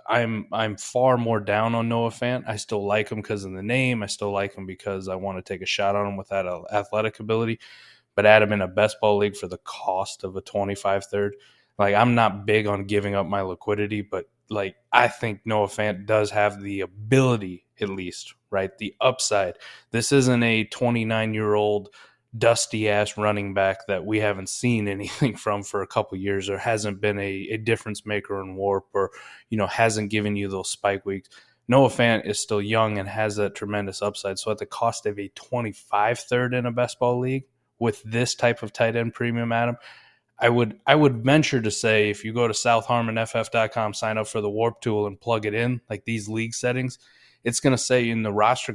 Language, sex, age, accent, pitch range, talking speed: English, male, 20-39, American, 100-115 Hz, 215 wpm